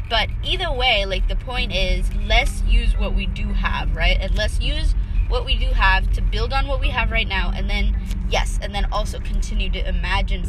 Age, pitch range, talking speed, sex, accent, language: 20-39, 75-95 Hz, 215 wpm, female, American, English